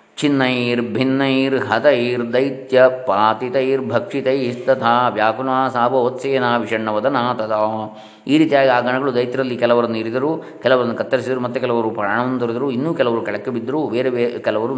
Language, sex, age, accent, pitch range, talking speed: Kannada, male, 20-39, native, 110-130 Hz, 125 wpm